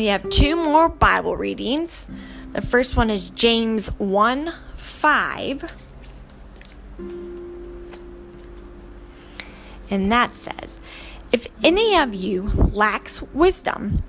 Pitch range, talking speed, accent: 175-250 Hz, 95 wpm, American